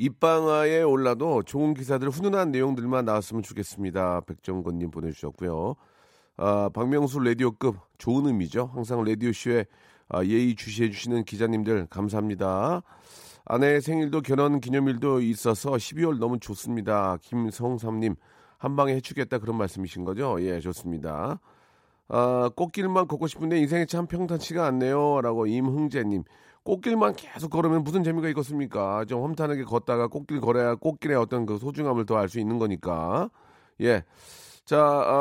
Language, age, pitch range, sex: Korean, 40-59, 110-155 Hz, male